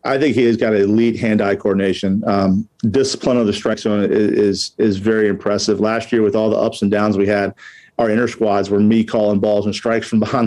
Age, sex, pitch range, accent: 40-59, male, 105-115 Hz, American